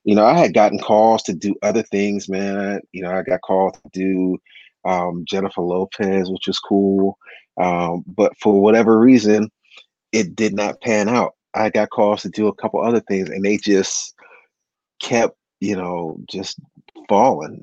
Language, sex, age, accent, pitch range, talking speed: English, male, 30-49, American, 95-110 Hz, 175 wpm